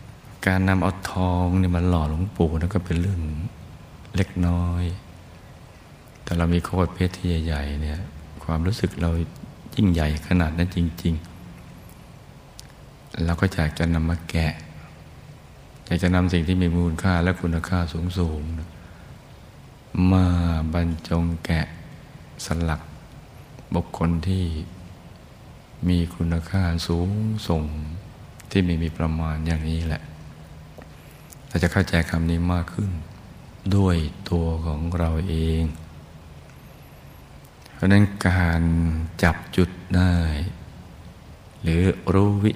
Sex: male